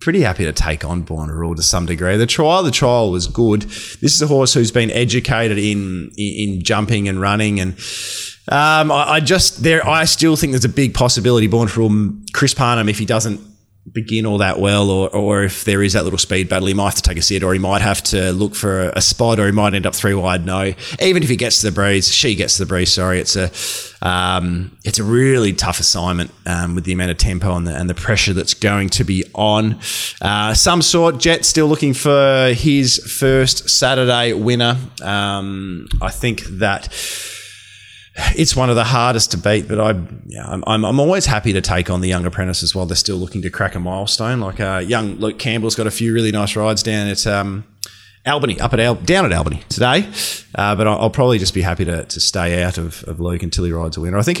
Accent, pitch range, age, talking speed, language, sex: Australian, 95-120 Hz, 20-39, 235 wpm, English, male